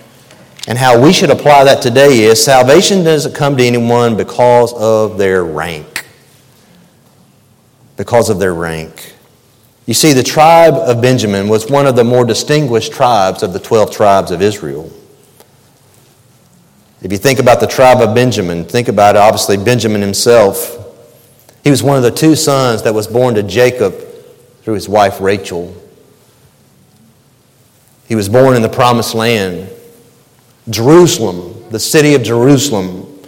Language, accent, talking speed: English, American, 145 wpm